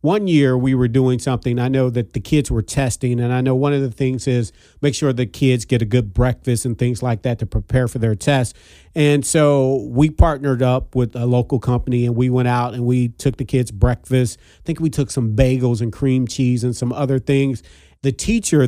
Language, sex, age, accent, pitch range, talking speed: English, male, 40-59, American, 125-145 Hz, 230 wpm